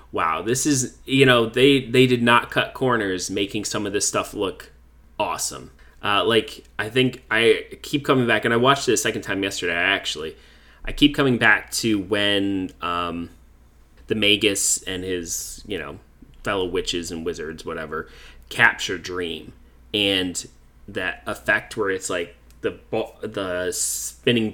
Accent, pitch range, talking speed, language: American, 95-130 Hz, 155 wpm, English